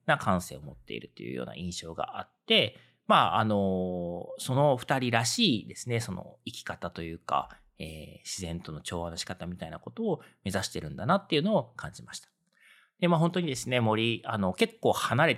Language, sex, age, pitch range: Japanese, male, 40-59, 85-145 Hz